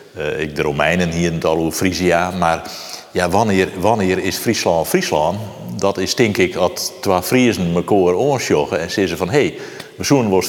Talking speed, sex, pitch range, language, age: 205 wpm, male, 90-115 Hz, Dutch, 50-69